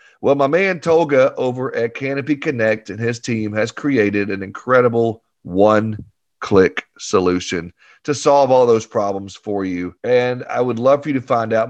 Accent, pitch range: American, 110-145 Hz